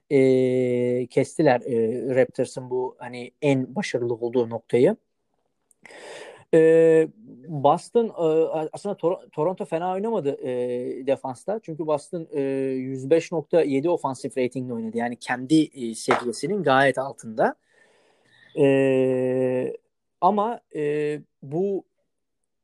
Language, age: Turkish, 30-49